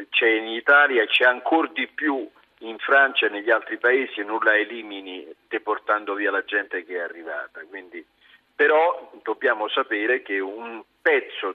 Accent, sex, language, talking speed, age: native, male, Italian, 160 wpm, 50-69